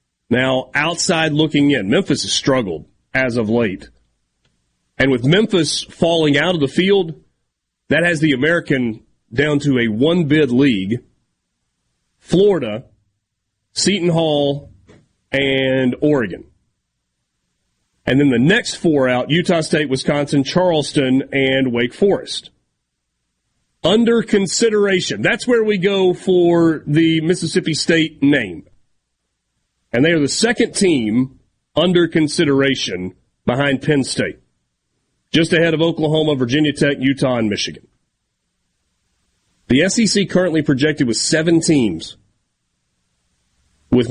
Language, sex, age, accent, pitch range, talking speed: English, male, 40-59, American, 105-165 Hz, 115 wpm